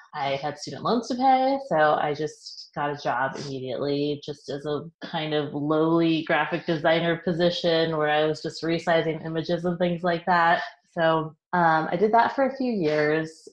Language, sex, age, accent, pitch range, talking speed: English, female, 30-49, American, 150-175 Hz, 180 wpm